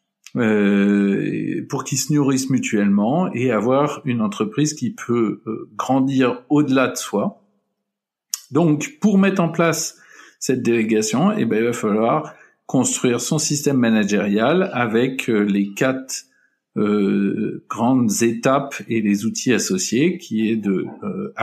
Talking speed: 135 wpm